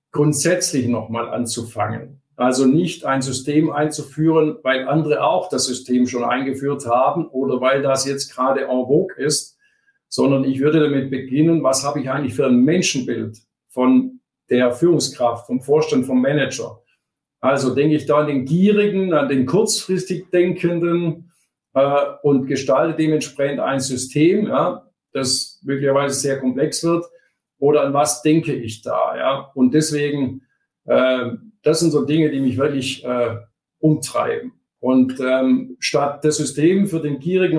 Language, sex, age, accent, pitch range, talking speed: German, male, 50-69, German, 130-160 Hz, 145 wpm